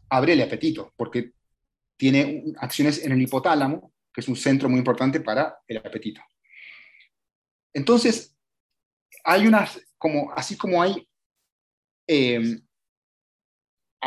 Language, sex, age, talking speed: Spanish, male, 30-49, 110 wpm